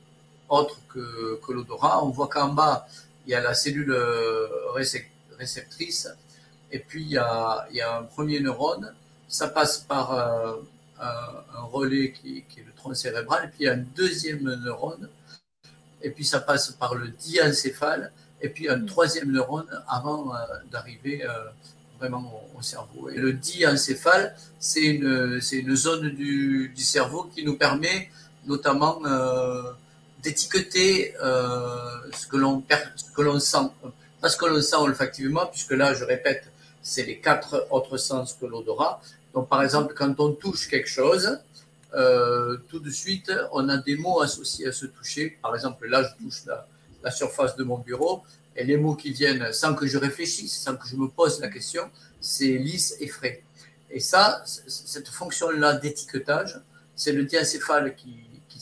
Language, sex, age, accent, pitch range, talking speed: French, male, 50-69, French, 125-155 Hz, 170 wpm